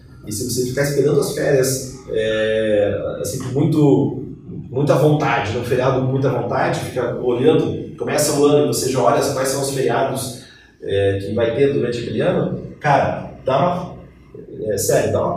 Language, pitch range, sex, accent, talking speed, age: Portuguese, 110-140 Hz, male, Brazilian, 175 wpm, 30-49